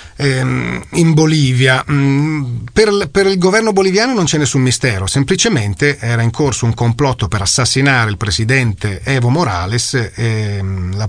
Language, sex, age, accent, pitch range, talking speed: Italian, male, 40-59, native, 105-135 Hz, 130 wpm